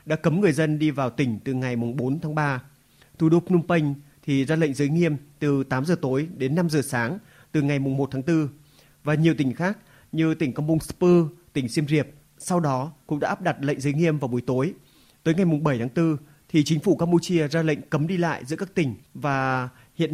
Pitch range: 135-165 Hz